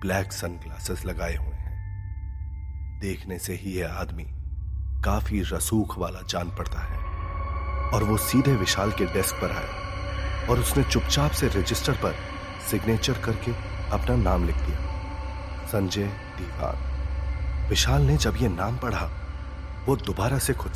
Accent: native